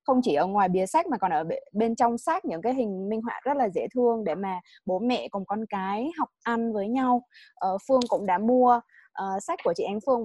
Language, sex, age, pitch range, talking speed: Vietnamese, female, 20-39, 200-265 Hz, 240 wpm